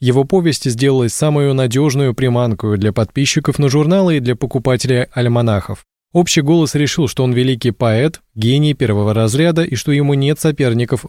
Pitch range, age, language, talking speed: 115-145 Hz, 20-39, Russian, 155 wpm